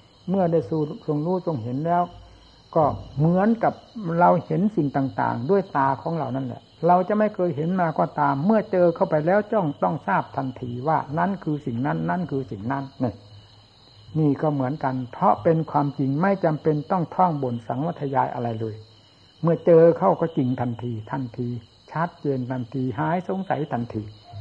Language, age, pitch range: Thai, 60-79, 120-165 Hz